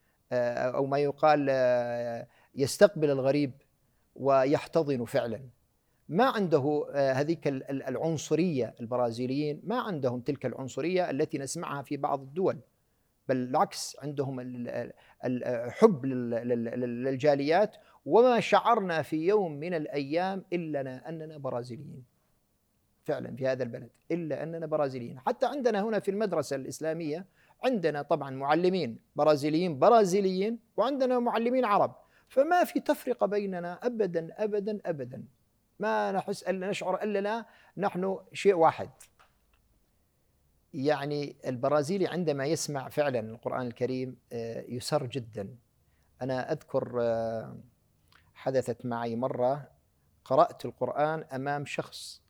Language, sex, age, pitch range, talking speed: Arabic, male, 50-69, 125-180 Hz, 105 wpm